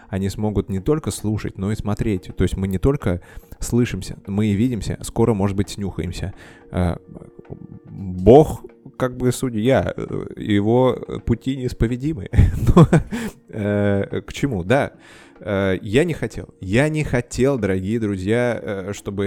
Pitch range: 100-130 Hz